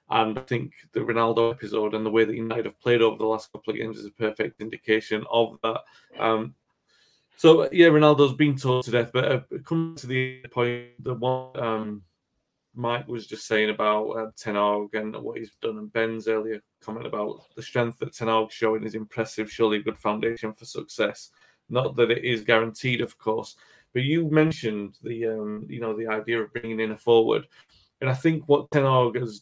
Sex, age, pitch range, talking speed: male, 30-49, 110-125 Hz, 205 wpm